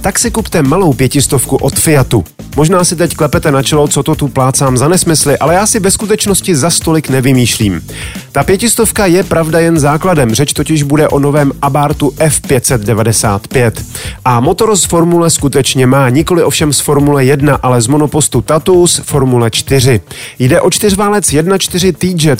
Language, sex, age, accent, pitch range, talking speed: Czech, male, 30-49, native, 130-165 Hz, 165 wpm